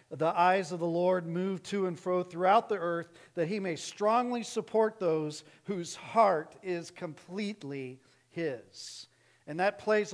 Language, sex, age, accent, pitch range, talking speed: English, male, 50-69, American, 155-210 Hz, 155 wpm